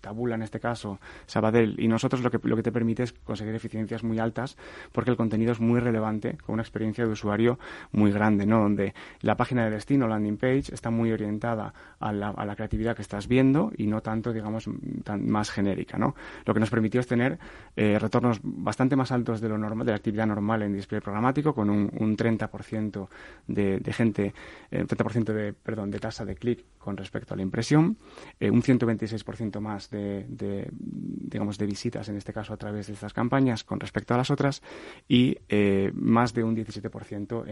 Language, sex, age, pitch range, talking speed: Spanish, male, 30-49, 105-115 Hz, 205 wpm